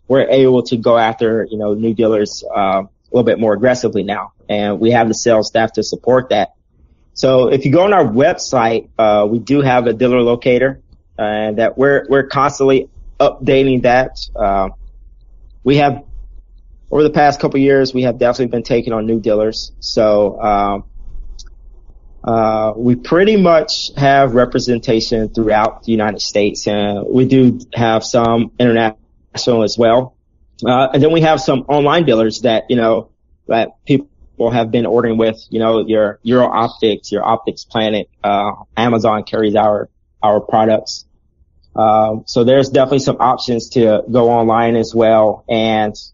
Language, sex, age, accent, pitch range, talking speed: English, male, 30-49, American, 105-130 Hz, 165 wpm